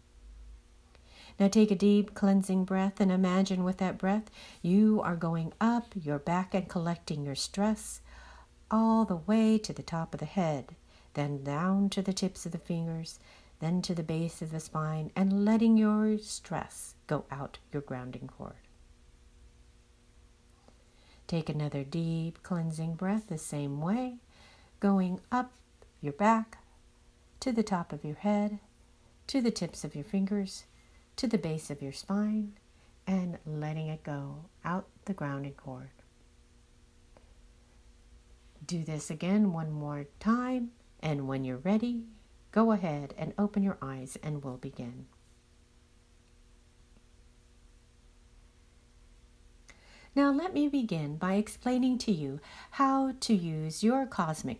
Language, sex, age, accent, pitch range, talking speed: English, female, 60-79, American, 140-205 Hz, 135 wpm